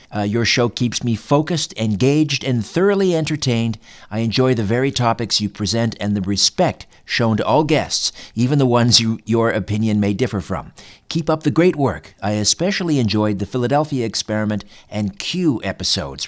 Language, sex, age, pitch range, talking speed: English, male, 50-69, 105-135 Hz, 170 wpm